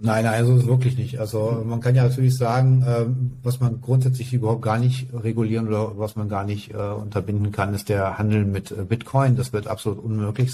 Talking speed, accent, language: 190 wpm, German, German